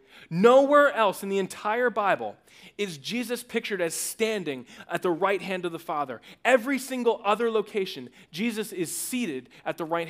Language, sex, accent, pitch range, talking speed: English, male, American, 185-250 Hz, 165 wpm